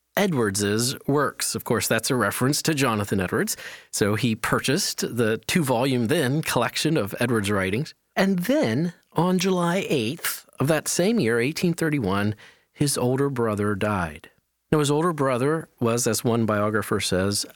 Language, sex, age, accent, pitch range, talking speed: English, male, 40-59, American, 110-155 Hz, 150 wpm